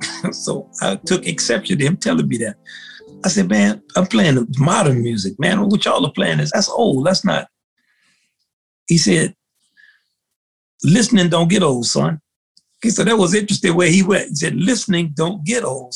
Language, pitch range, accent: English, 130-195 Hz, American